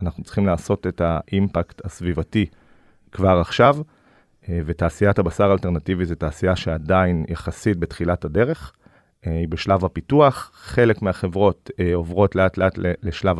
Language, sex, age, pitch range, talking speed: Hebrew, male, 30-49, 85-100 Hz, 115 wpm